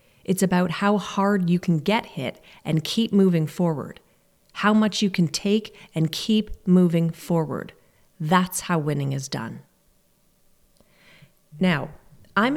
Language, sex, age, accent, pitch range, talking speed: English, female, 30-49, American, 165-205 Hz, 135 wpm